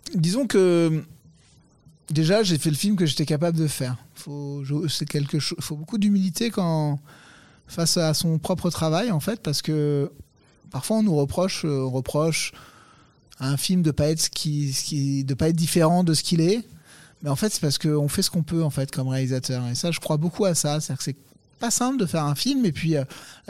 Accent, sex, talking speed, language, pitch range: French, male, 210 wpm, French, 150-180 Hz